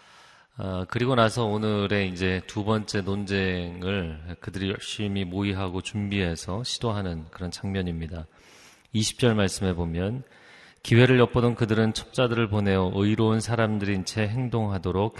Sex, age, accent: male, 30-49, native